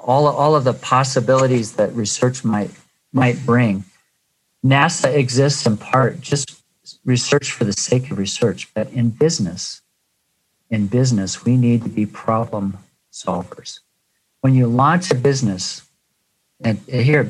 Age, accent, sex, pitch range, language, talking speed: 50-69, American, male, 120-145 Hz, English, 140 wpm